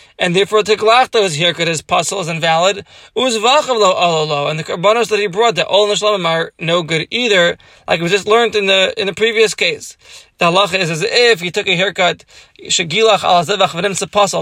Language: English